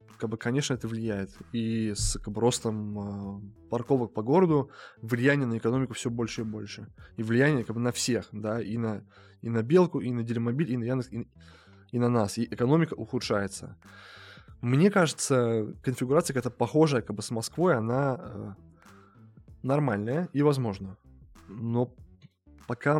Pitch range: 105-130 Hz